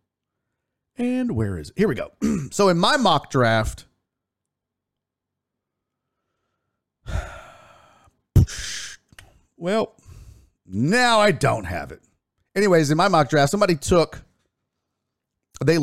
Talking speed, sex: 100 wpm, male